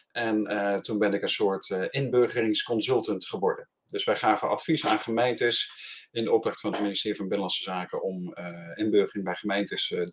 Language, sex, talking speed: Dutch, male, 185 wpm